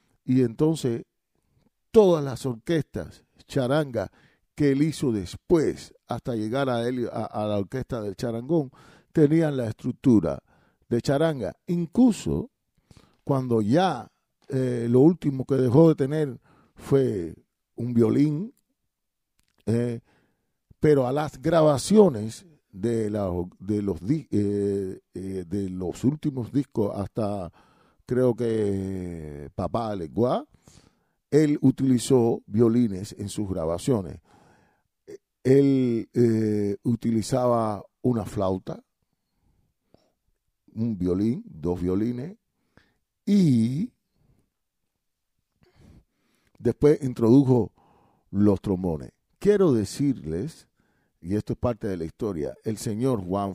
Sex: male